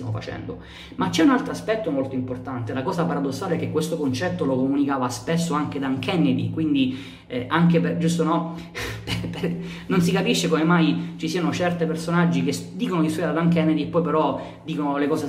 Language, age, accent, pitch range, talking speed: Italian, 20-39, native, 135-170 Hz, 190 wpm